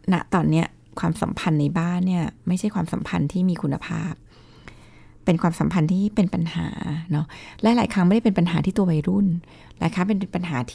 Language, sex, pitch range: Thai, female, 160-205 Hz